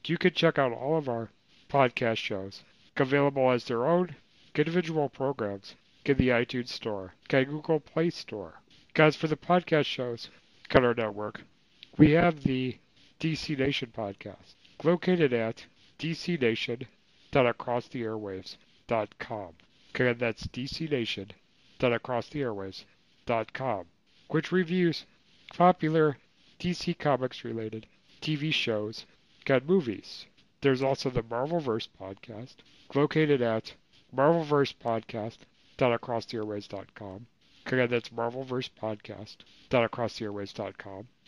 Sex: male